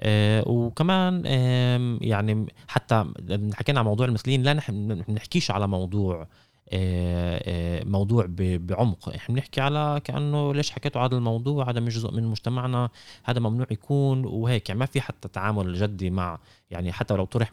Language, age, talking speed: Arabic, 20-39, 145 wpm